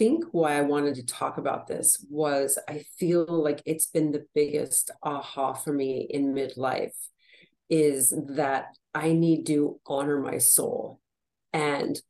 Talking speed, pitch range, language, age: 150 wpm, 140-160 Hz, English, 40-59